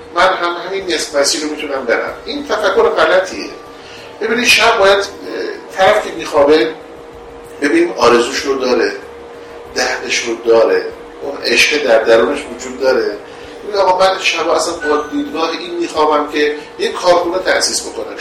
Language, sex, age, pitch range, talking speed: Persian, male, 50-69, 145-225 Hz, 140 wpm